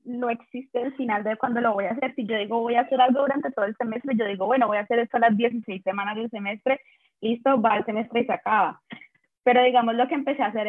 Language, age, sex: Spanish, 20-39, female